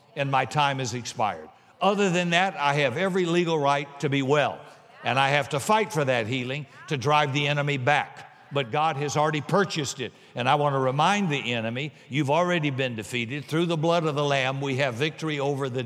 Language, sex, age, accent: English, male, 60-79, American